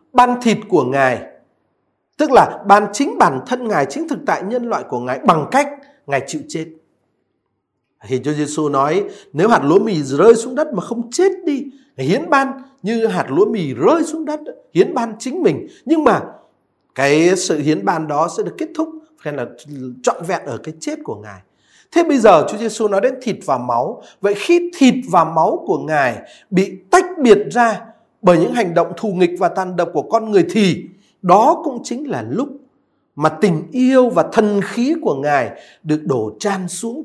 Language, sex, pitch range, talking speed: Vietnamese, male, 175-275 Hz, 200 wpm